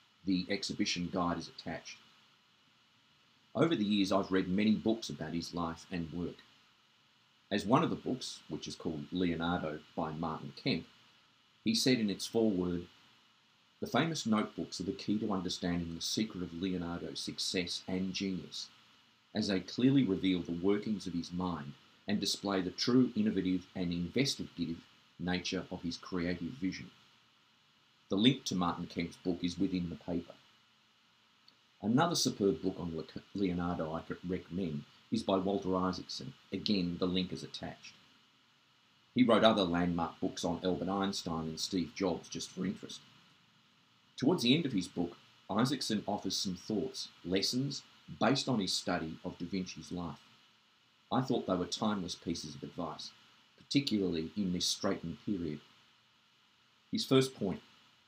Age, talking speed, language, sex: 40-59, 150 wpm, English, male